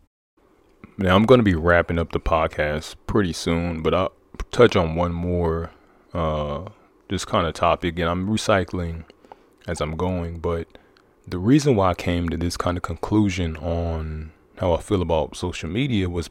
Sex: male